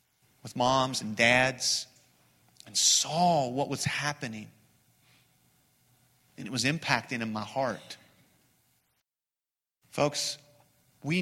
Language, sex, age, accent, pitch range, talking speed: English, male, 40-59, American, 125-205 Hz, 95 wpm